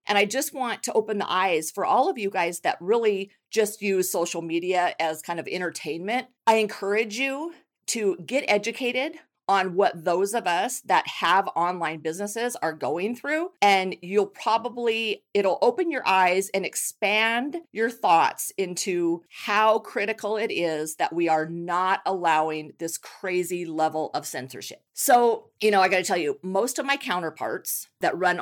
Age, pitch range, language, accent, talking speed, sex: 40-59, 170-220 Hz, English, American, 170 wpm, female